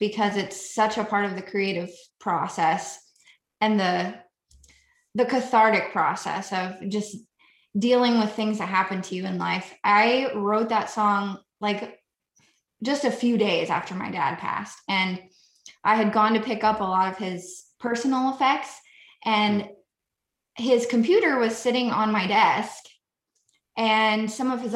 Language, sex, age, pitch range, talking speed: English, female, 20-39, 195-230 Hz, 155 wpm